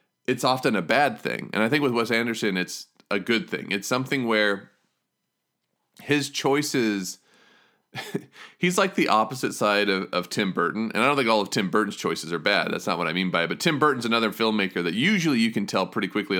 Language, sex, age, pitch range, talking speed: English, male, 30-49, 95-120 Hz, 215 wpm